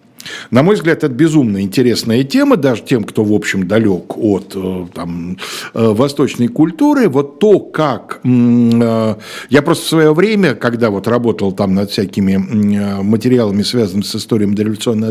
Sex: male